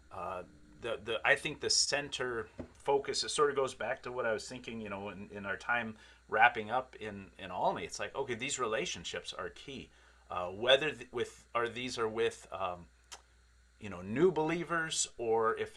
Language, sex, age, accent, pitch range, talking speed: English, male, 40-59, American, 105-140 Hz, 200 wpm